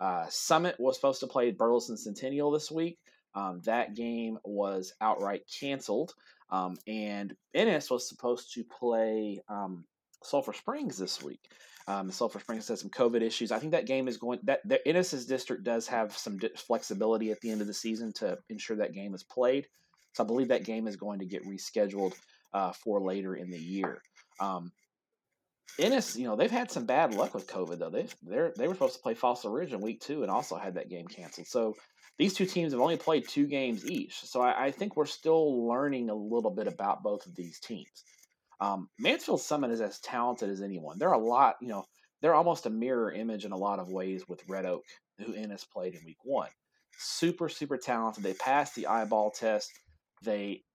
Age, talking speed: 30-49, 205 wpm